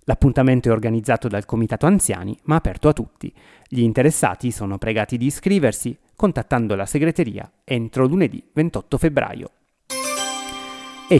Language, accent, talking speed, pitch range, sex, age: Italian, native, 130 wpm, 110-140 Hz, male, 30-49